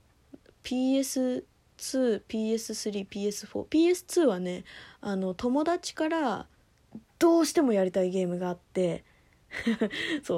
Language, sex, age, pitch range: Japanese, female, 20-39, 190-295 Hz